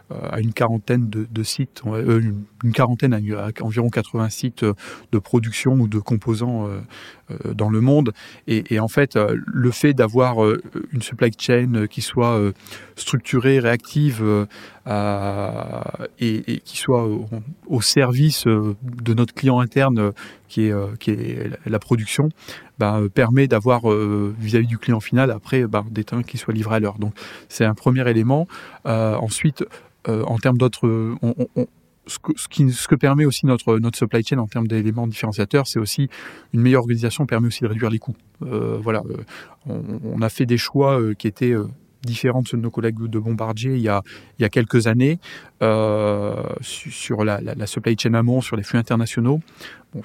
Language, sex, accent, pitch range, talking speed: French, male, French, 110-125 Hz, 175 wpm